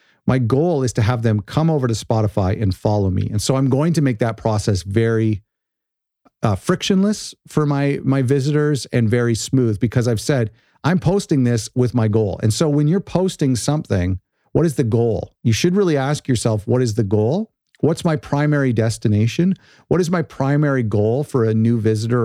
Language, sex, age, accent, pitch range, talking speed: English, male, 40-59, American, 110-140 Hz, 195 wpm